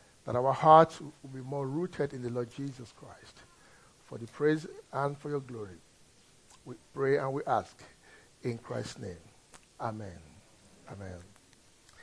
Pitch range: 140-170 Hz